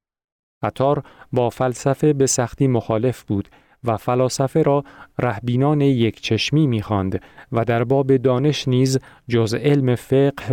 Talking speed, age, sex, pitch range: 125 wpm, 40-59, male, 100-130 Hz